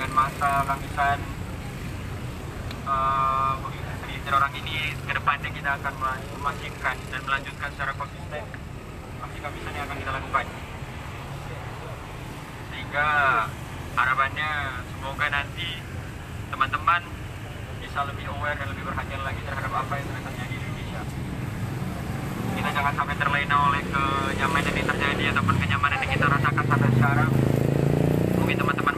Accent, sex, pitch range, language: native, male, 120-140 Hz, Indonesian